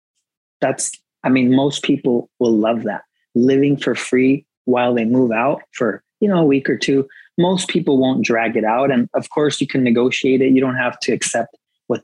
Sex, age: male, 30-49